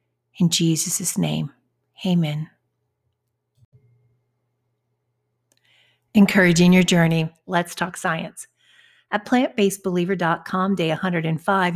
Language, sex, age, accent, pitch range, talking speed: English, female, 50-69, American, 175-205 Hz, 70 wpm